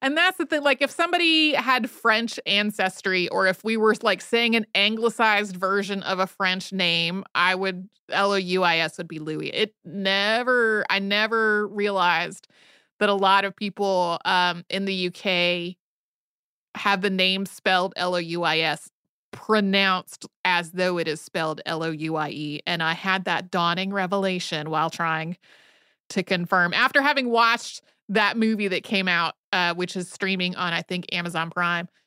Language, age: English, 30-49